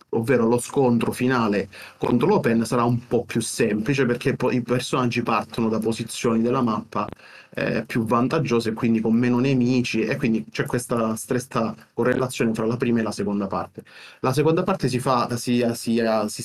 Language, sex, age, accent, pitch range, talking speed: Italian, male, 30-49, native, 115-130 Hz, 175 wpm